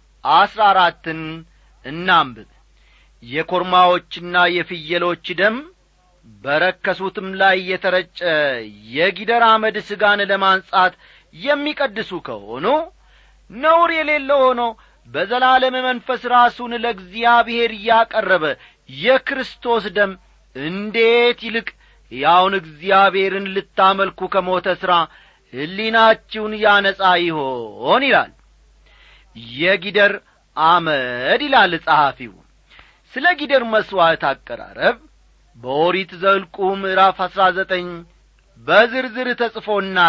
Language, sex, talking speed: Amharic, male, 70 wpm